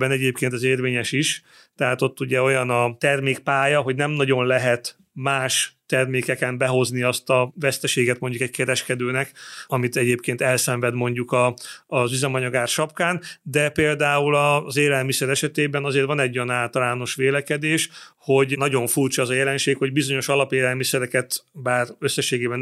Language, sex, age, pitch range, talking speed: Hungarian, male, 30-49, 125-145 Hz, 145 wpm